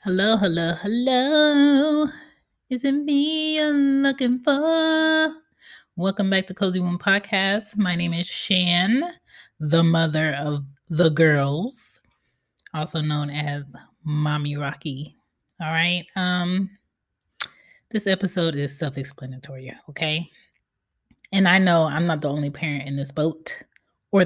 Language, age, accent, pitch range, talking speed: English, 20-39, American, 140-195 Hz, 120 wpm